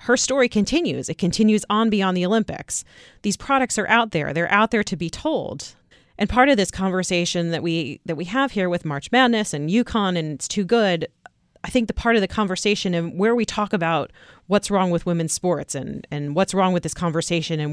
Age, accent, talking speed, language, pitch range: 40-59, American, 220 wpm, English, 170-215 Hz